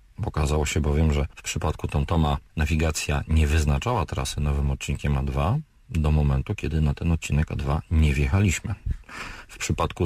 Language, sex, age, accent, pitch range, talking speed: Polish, male, 40-59, native, 75-95 Hz, 150 wpm